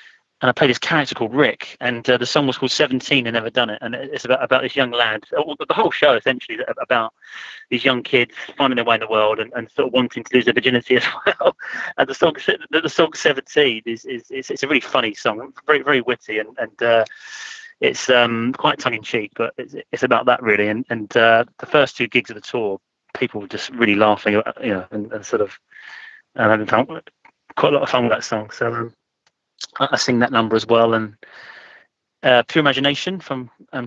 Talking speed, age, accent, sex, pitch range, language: 225 wpm, 30-49, British, male, 115-135 Hz, English